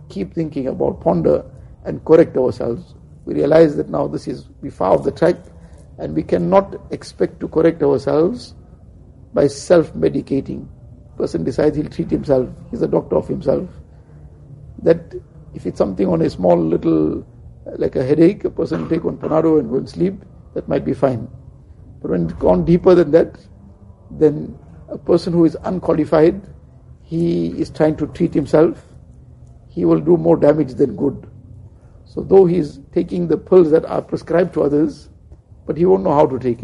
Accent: Indian